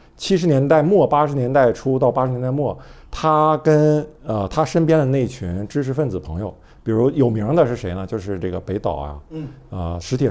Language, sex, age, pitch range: Chinese, male, 50-69, 105-150 Hz